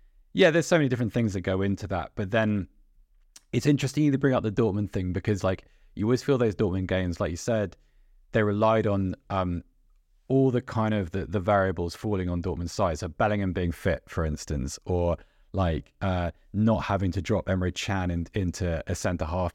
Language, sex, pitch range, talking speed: English, male, 85-110 Hz, 205 wpm